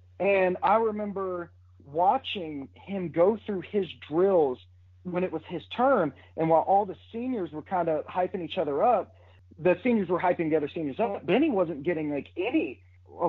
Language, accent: English, American